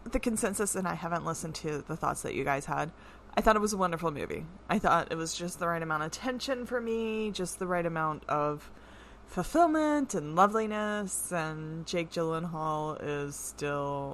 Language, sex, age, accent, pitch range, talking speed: English, female, 20-39, American, 160-215 Hz, 190 wpm